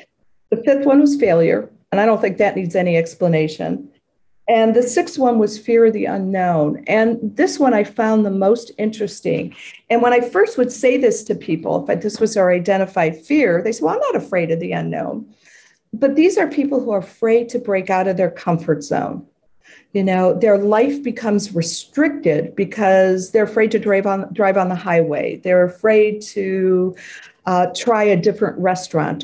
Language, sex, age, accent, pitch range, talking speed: English, female, 50-69, American, 185-240 Hz, 185 wpm